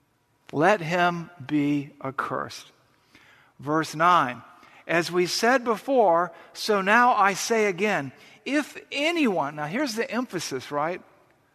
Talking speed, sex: 115 wpm, male